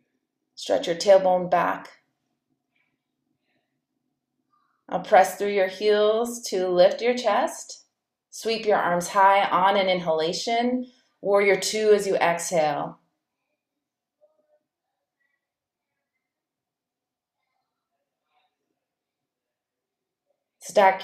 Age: 30-49